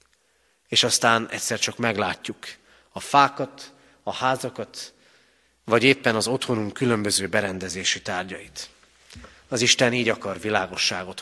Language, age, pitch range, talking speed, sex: Hungarian, 30-49, 110-145 Hz, 110 wpm, male